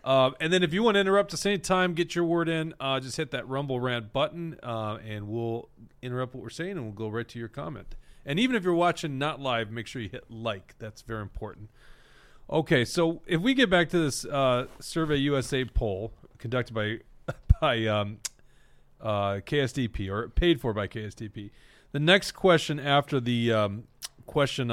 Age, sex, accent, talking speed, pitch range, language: 40-59, male, American, 200 wpm, 110-150 Hz, English